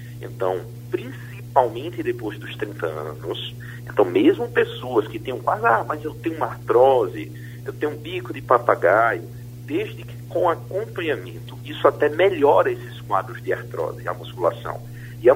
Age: 50-69